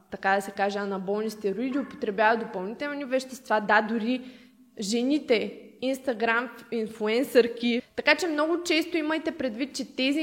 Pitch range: 220-270 Hz